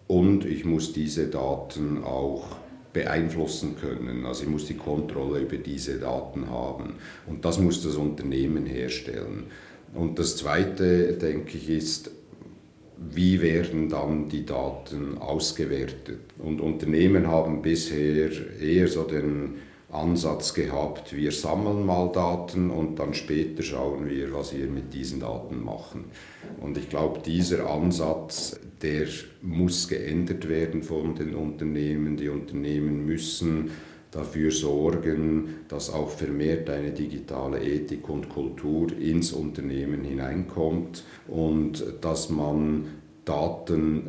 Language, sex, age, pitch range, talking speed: German, male, 50-69, 75-85 Hz, 125 wpm